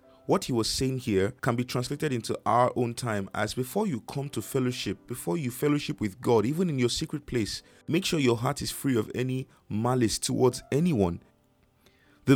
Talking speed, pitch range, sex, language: 195 wpm, 110-145 Hz, male, English